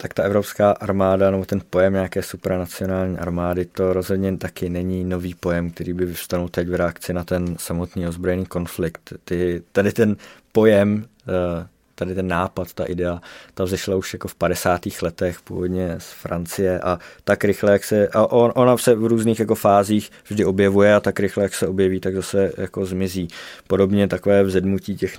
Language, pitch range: Czech, 90-100 Hz